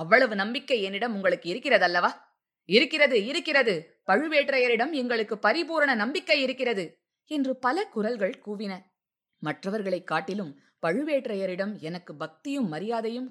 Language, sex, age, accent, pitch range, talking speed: Tamil, female, 20-39, native, 180-235 Hz, 100 wpm